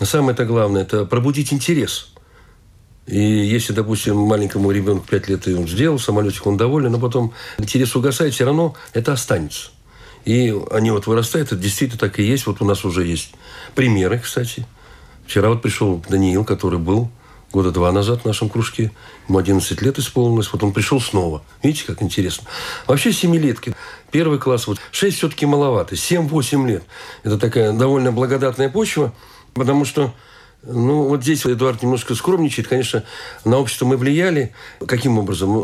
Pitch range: 105-135 Hz